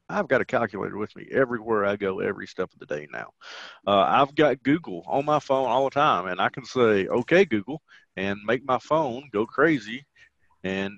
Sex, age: male, 40-59